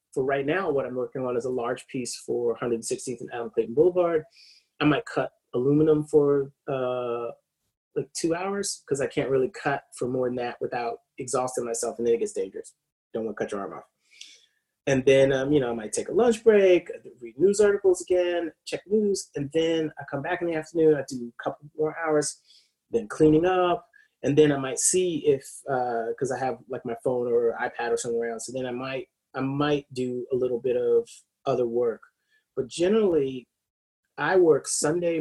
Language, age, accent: English, 30-49, American